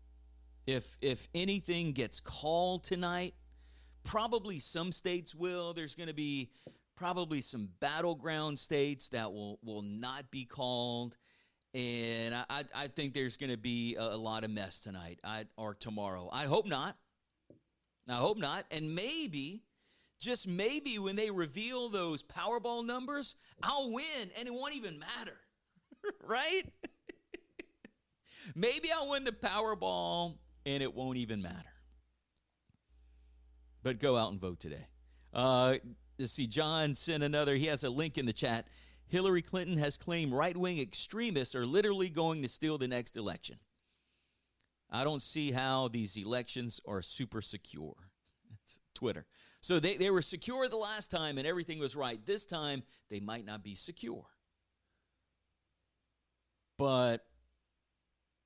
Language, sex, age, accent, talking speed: English, male, 40-59, American, 145 wpm